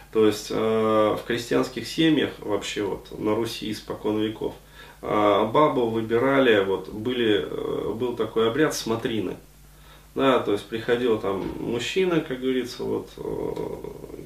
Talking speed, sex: 125 wpm, male